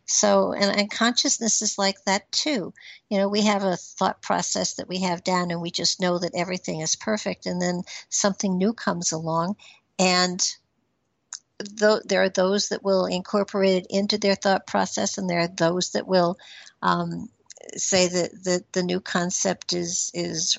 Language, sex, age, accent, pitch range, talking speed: English, female, 60-79, American, 175-210 Hz, 180 wpm